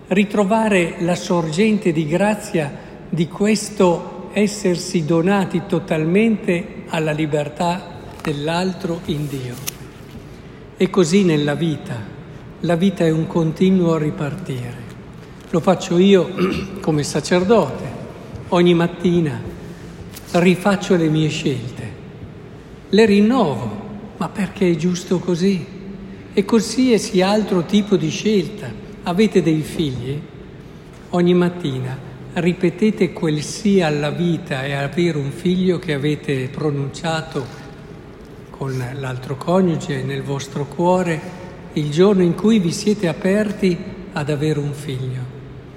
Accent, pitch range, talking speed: native, 155-195 Hz, 110 wpm